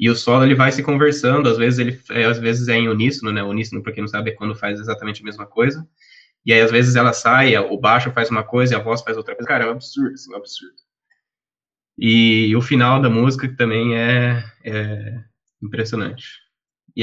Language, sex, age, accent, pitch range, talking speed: Portuguese, male, 20-39, Brazilian, 110-135 Hz, 220 wpm